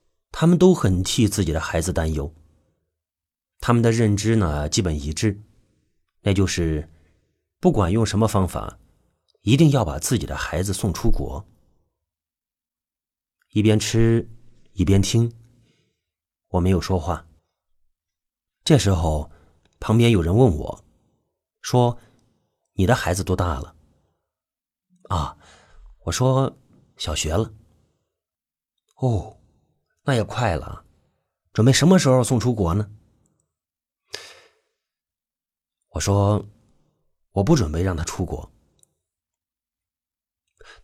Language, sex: Chinese, male